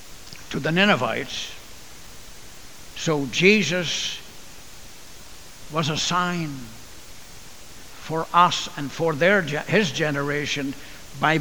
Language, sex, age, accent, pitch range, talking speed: English, male, 60-79, American, 140-190 Hz, 85 wpm